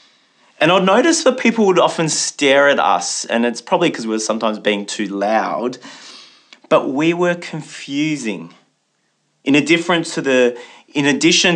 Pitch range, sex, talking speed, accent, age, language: 120-155 Hz, male, 140 wpm, Australian, 30-49, English